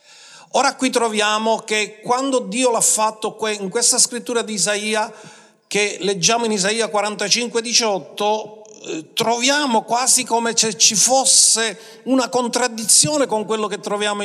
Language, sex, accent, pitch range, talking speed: Italian, male, native, 180-240 Hz, 130 wpm